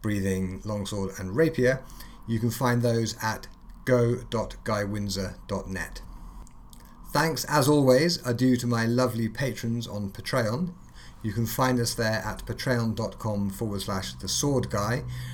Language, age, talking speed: English, 30-49, 130 wpm